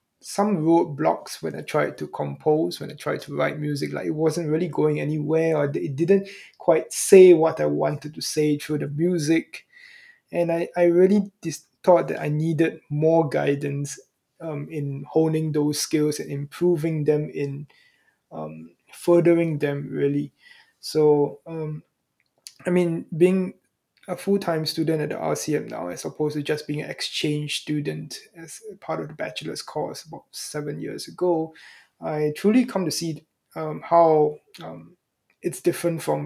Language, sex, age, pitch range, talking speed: English, male, 20-39, 150-175 Hz, 160 wpm